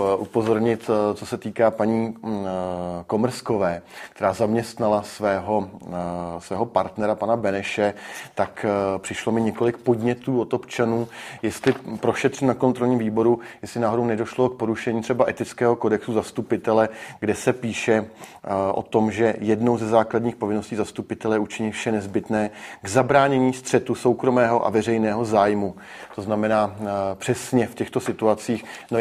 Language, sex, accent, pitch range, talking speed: Czech, male, native, 105-120 Hz, 130 wpm